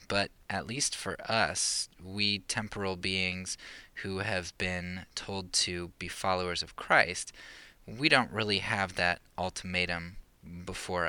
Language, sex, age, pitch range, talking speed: English, male, 20-39, 90-100 Hz, 130 wpm